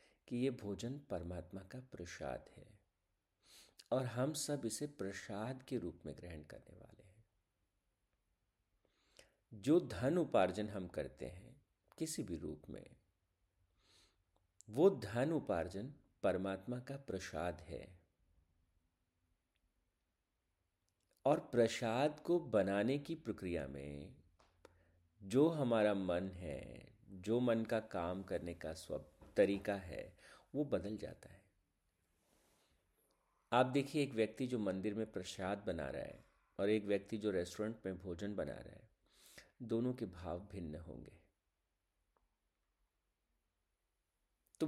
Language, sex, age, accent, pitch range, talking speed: Hindi, male, 50-69, native, 90-120 Hz, 115 wpm